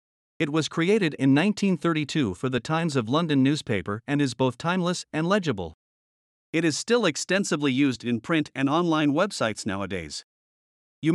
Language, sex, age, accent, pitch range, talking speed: English, male, 50-69, American, 130-170 Hz, 155 wpm